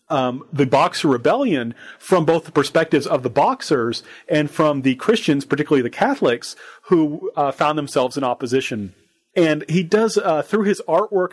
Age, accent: 40-59, American